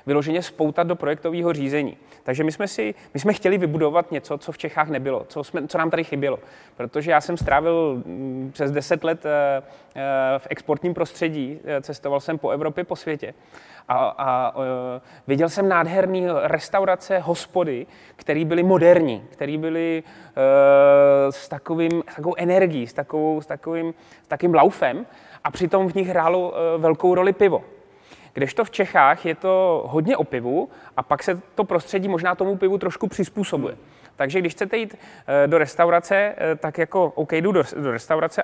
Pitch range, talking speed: 145-185 Hz, 160 wpm